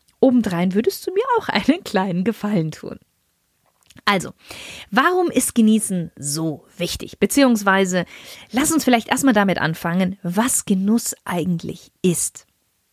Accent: German